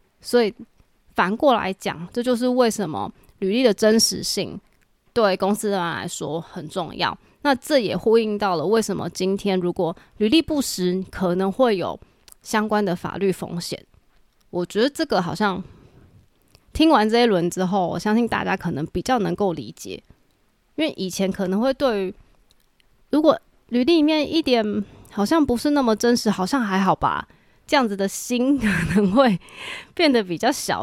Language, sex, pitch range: Chinese, female, 190-245 Hz